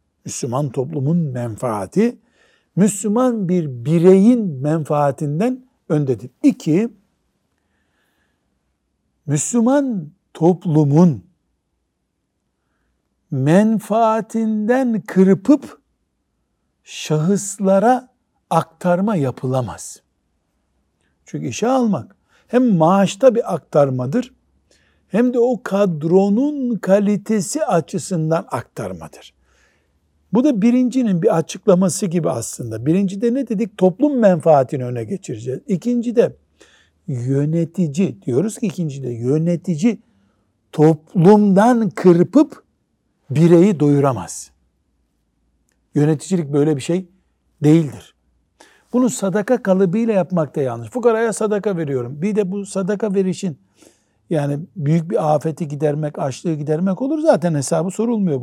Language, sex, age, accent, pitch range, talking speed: Turkish, male, 60-79, native, 145-210 Hz, 85 wpm